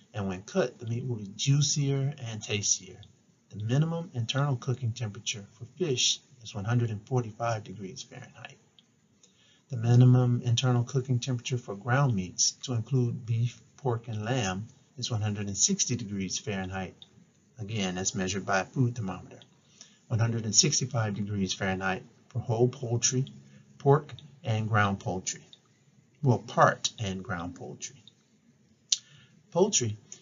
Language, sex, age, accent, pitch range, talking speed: English, male, 50-69, American, 105-130 Hz, 125 wpm